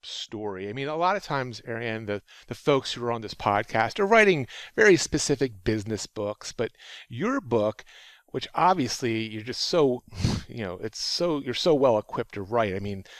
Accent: American